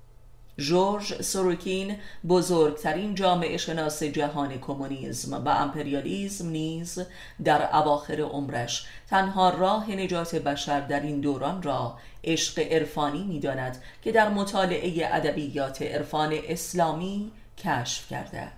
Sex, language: female, Persian